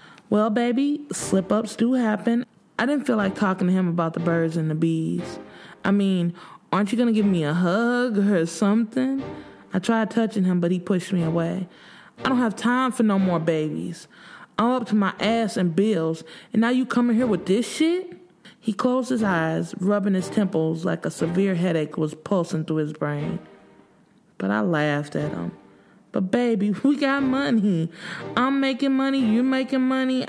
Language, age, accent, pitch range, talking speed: English, 20-39, American, 180-260 Hz, 185 wpm